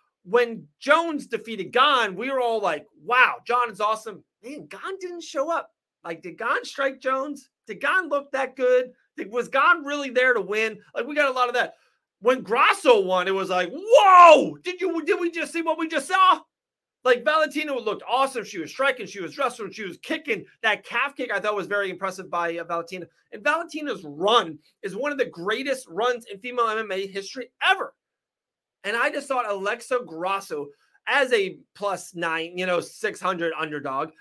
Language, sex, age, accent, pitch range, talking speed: English, male, 30-49, American, 195-295 Hz, 190 wpm